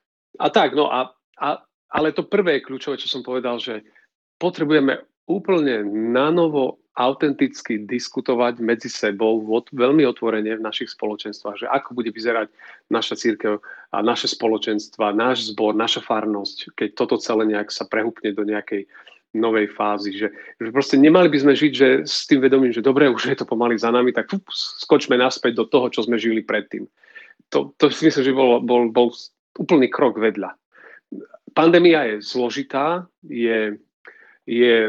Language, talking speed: Slovak, 165 wpm